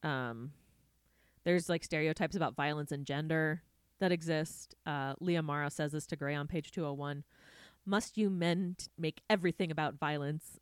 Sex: female